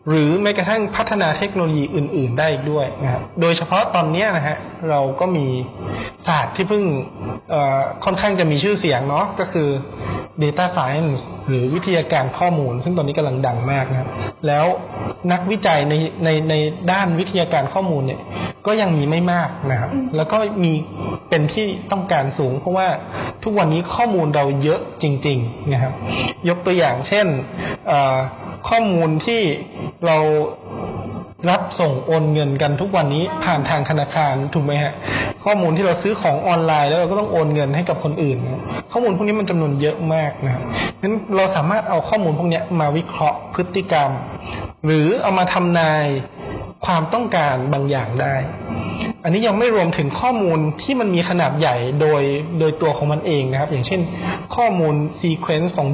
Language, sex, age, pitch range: Thai, male, 20-39, 140-180 Hz